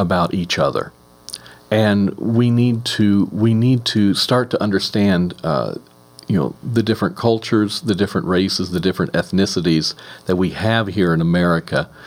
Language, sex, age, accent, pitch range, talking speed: English, male, 40-59, American, 95-120 Hz, 155 wpm